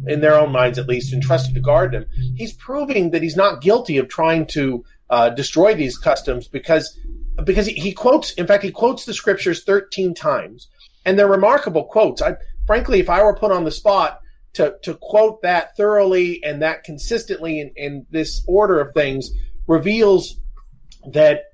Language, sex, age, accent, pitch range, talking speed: English, male, 40-59, American, 150-205 Hz, 180 wpm